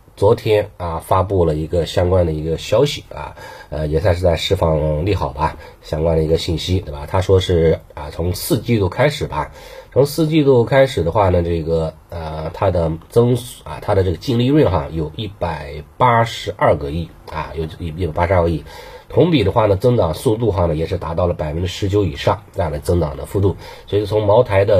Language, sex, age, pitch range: Chinese, male, 30-49, 80-95 Hz